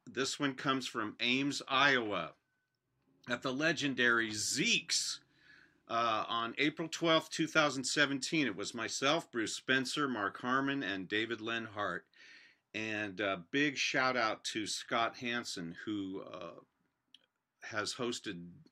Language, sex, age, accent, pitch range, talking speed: English, male, 50-69, American, 100-130 Hz, 120 wpm